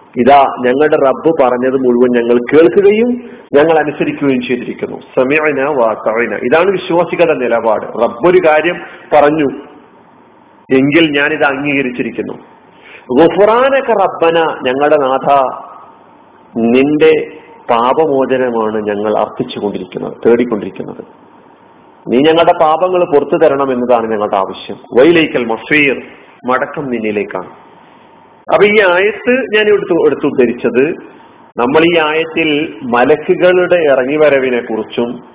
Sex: male